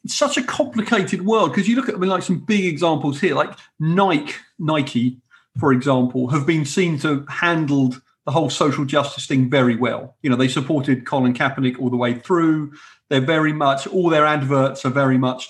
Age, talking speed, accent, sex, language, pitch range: 40-59, 200 wpm, British, male, English, 130-165 Hz